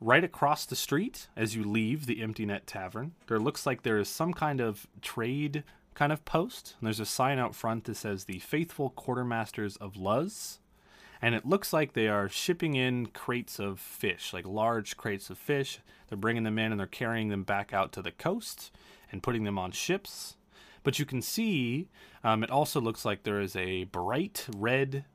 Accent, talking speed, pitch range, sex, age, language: American, 200 wpm, 100-130 Hz, male, 20-39, English